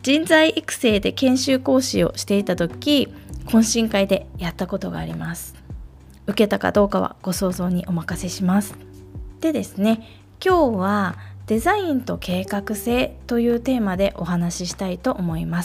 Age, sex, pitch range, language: 20-39, female, 175-255 Hz, Japanese